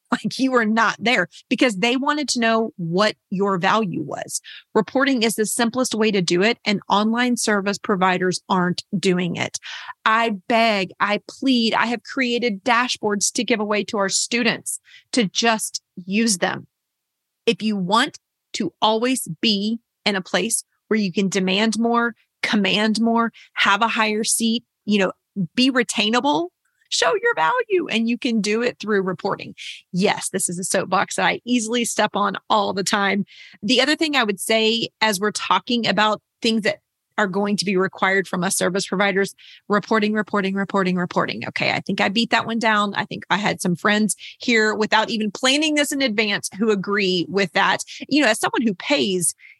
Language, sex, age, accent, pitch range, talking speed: English, female, 30-49, American, 195-240 Hz, 180 wpm